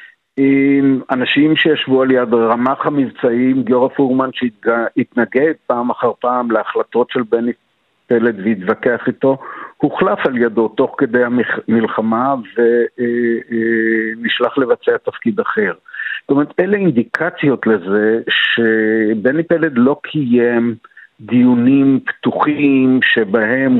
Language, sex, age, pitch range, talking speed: Hebrew, male, 60-79, 115-135 Hz, 105 wpm